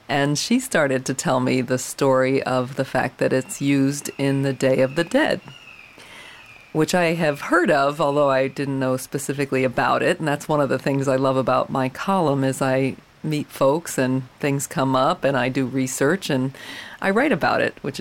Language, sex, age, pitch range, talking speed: English, female, 40-59, 135-170 Hz, 205 wpm